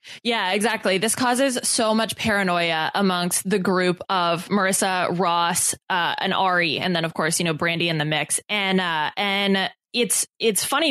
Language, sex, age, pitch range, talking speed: English, female, 20-39, 185-230 Hz, 175 wpm